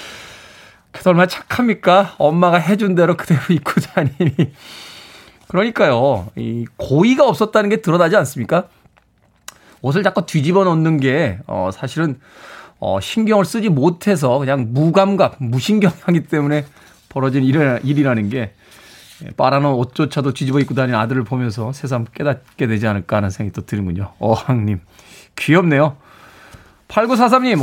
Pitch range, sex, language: 130-195 Hz, male, Korean